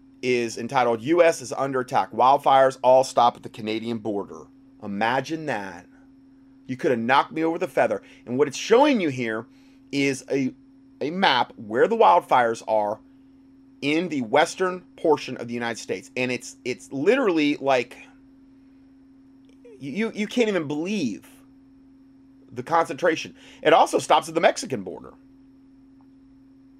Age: 30-49